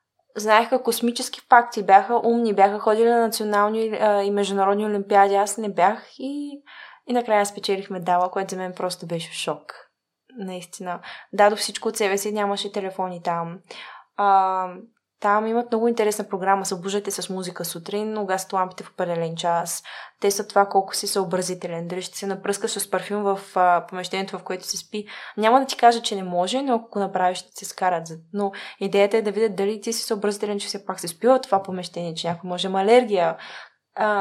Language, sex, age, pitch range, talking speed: Bulgarian, female, 20-39, 190-215 Hz, 185 wpm